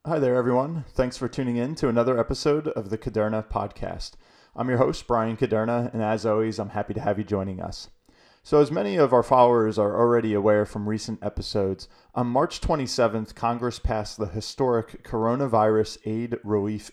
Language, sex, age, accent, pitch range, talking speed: English, male, 30-49, American, 105-120 Hz, 180 wpm